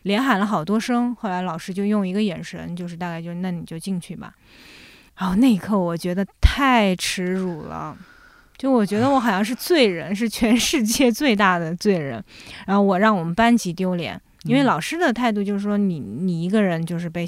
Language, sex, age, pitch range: Chinese, female, 20-39, 175-215 Hz